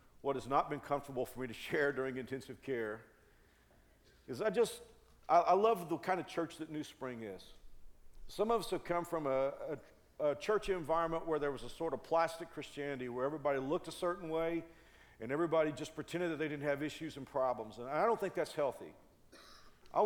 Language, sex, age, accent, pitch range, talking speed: English, male, 50-69, American, 135-185 Hz, 205 wpm